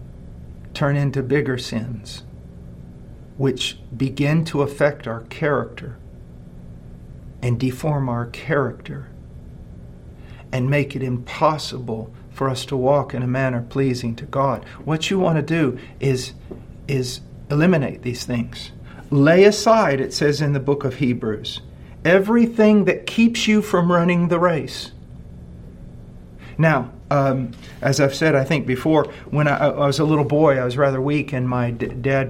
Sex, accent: male, American